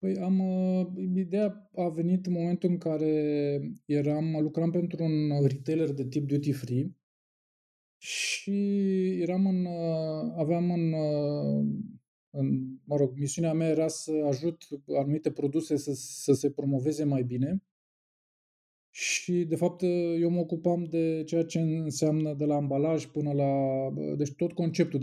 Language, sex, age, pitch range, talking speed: Romanian, male, 20-39, 140-175 Hz, 135 wpm